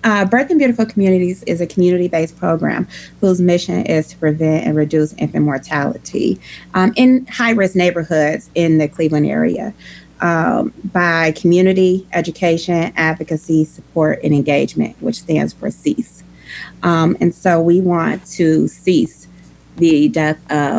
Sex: female